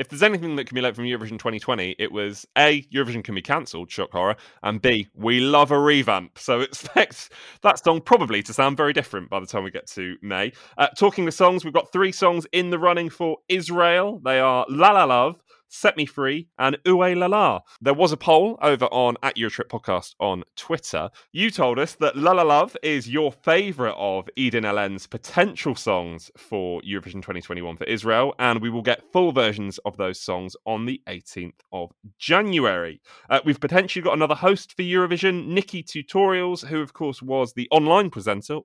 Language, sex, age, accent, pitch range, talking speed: English, male, 20-39, British, 110-180 Hz, 195 wpm